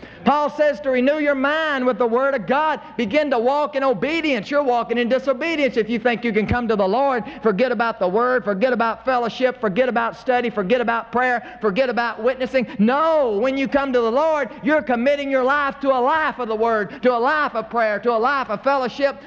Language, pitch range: English, 215-275 Hz